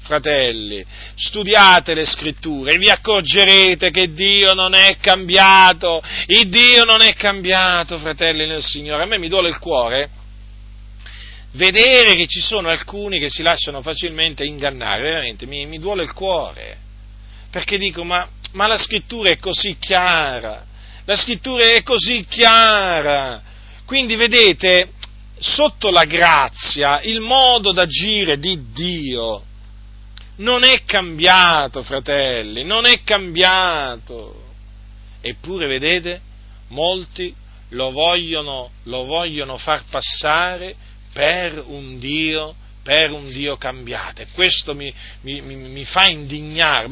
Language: Italian